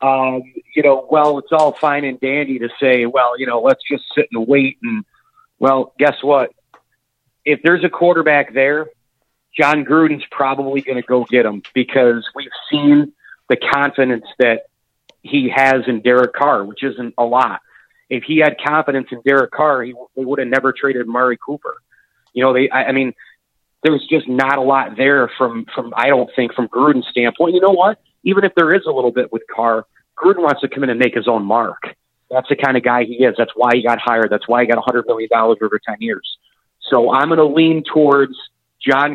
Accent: American